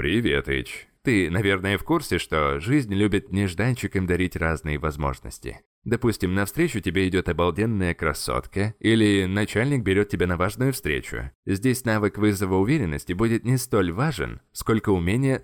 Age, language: 20-39, Russian